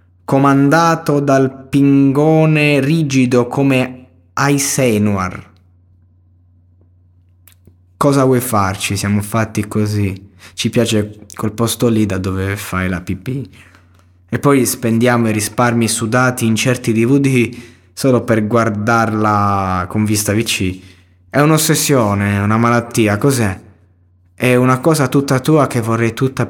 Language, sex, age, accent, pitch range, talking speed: Italian, male, 20-39, native, 100-125 Hz, 115 wpm